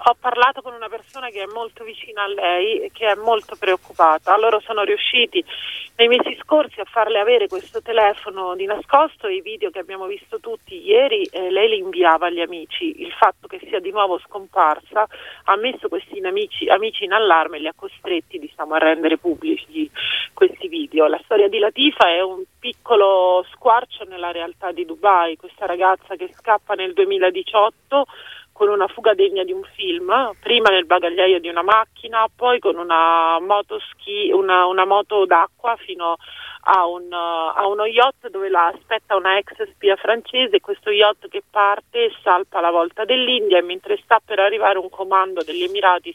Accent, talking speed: native, 175 wpm